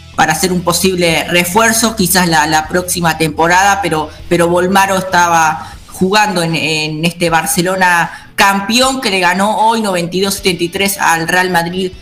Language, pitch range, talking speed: English, 165-200 Hz, 140 wpm